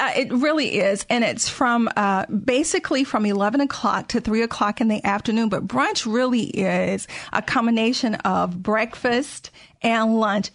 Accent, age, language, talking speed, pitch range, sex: American, 40-59, English, 160 wpm, 200-235 Hz, female